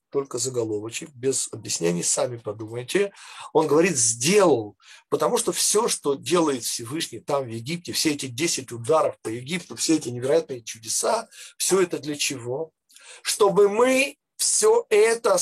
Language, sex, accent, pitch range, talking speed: Russian, male, native, 135-205 Hz, 140 wpm